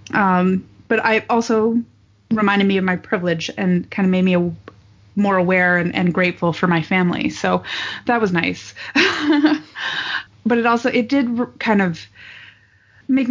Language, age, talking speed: English, 30-49, 160 wpm